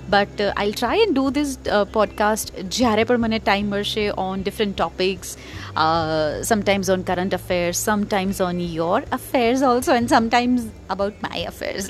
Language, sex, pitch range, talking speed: Gujarati, female, 195-240 Hz, 160 wpm